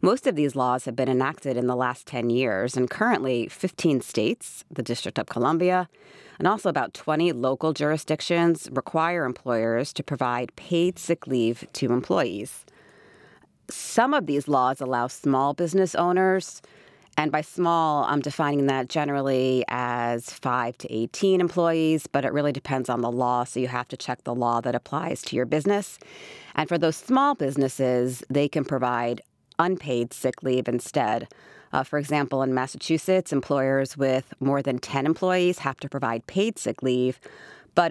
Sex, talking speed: female, 165 wpm